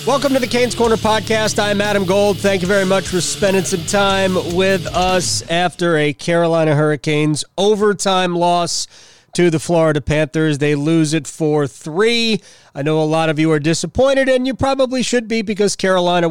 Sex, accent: male, American